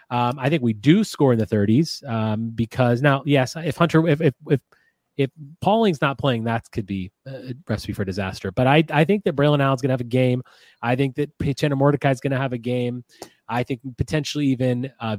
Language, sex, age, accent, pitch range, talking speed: English, male, 30-49, American, 120-155 Hz, 225 wpm